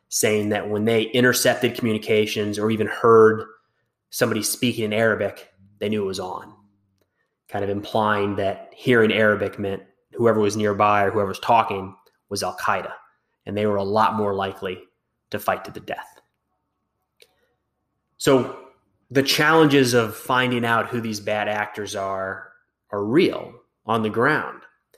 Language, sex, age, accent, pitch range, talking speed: English, male, 20-39, American, 105-115 Hz, 150 wpm